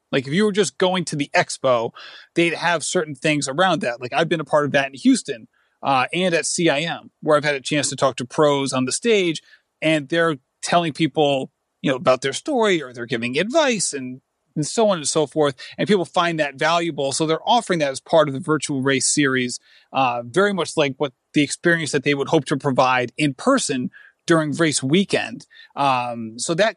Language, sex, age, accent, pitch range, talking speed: English, male, 30-49, American, 140-175 Hz, 215 wpm